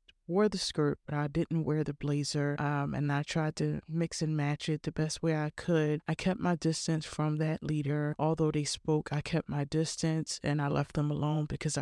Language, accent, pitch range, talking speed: English, American, 145-165 Hz, 220 wpm